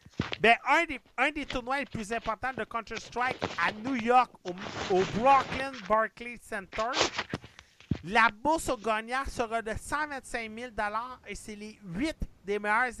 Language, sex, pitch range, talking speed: French, male, 200-245 Hz, 150 wpm